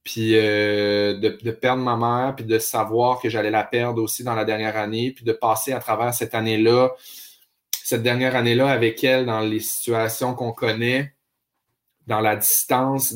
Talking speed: 180 wpm